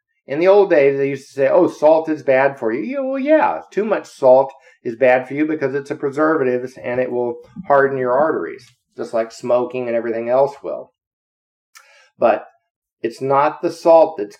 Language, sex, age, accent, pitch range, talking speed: English, male, 50-69, American, 125-165 Hz, 190 wpm